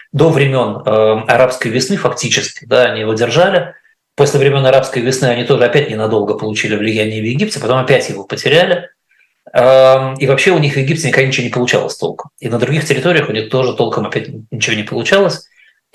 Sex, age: male, 20-39